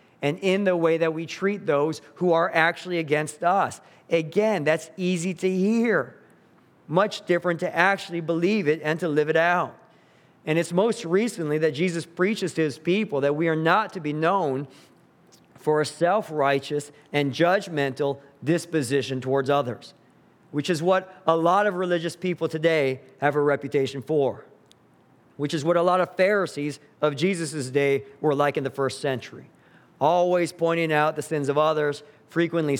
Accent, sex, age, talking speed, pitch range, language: American, male, 40-59, 165 wpm, 145-175 Hz, English